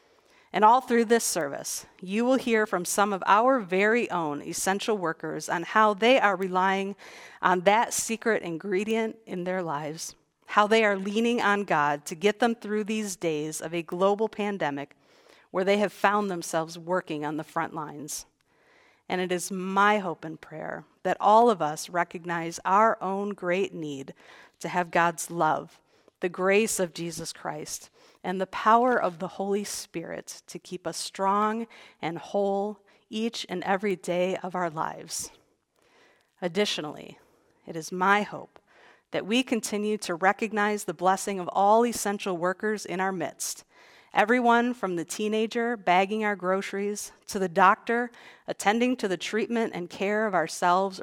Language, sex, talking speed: English, female, 160 wpm